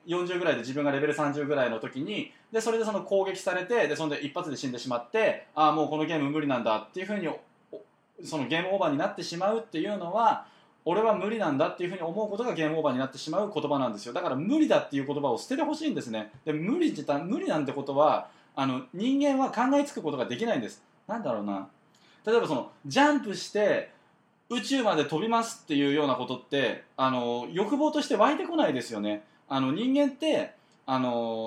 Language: Japanese